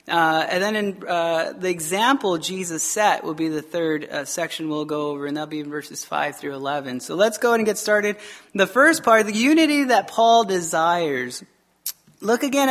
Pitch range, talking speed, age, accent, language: 170-230 Hz, 205 wpm, 30-49, American, English